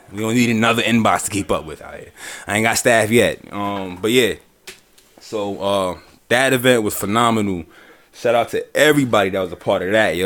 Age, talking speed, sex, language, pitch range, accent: 20-39, 200 wpm, male, English, 95-115 Hz, American